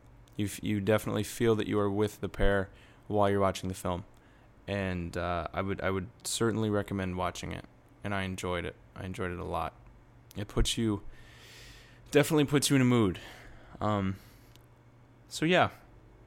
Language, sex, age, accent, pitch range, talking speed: English, male, 10-29, American, 100-125 Hz, 165 wpm